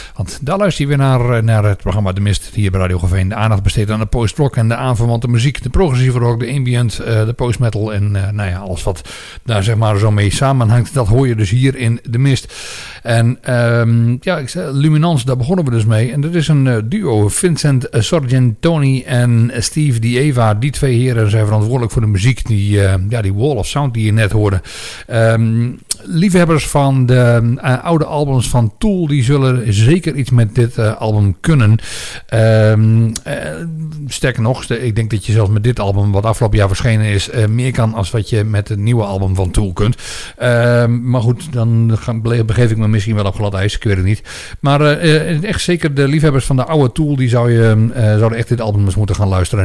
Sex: male